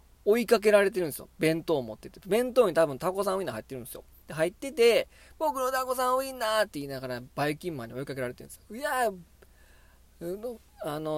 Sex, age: male, 20-39